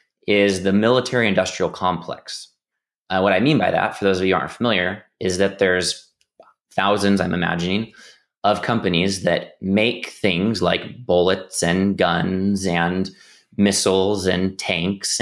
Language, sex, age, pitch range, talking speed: English, male, 20-39, 90-110 Hz, 140 wpm